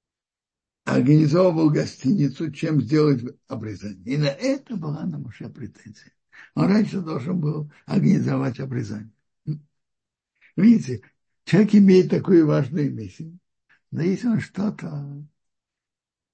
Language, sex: Russian, male